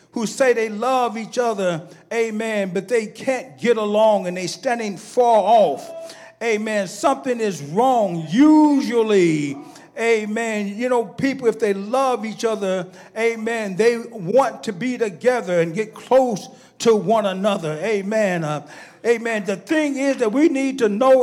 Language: English